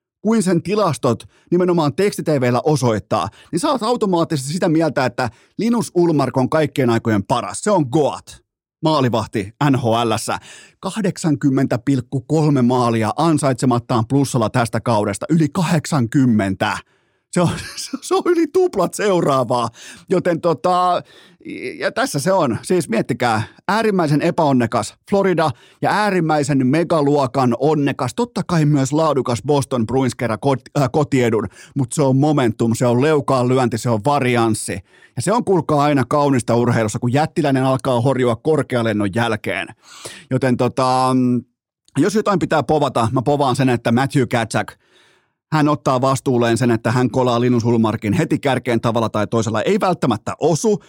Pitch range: 120-160 Hz